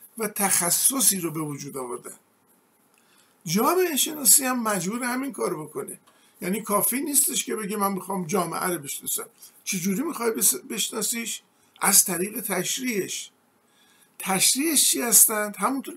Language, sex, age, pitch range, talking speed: Persian, male, 50-69, 185-225 Hz, 125 wpm